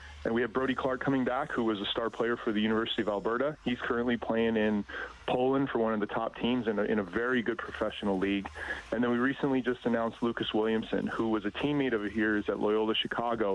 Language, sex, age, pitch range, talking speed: English, male, 30-49, 110-125 Hz, 235 wpm